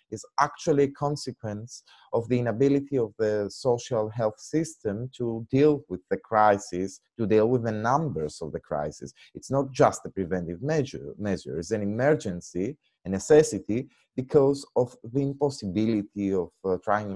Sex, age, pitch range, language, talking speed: male, 30-49, 100-135 Hz, Greek, 155 wpm